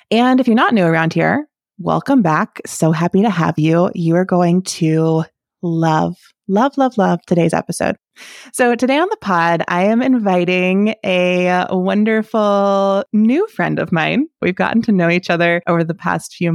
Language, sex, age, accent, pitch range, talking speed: English, female, 20-39, American, 165-205 Hz, 175 wpm